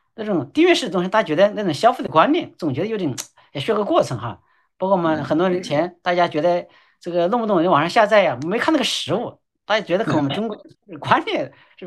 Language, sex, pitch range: Chinese, male, 140-190 Hz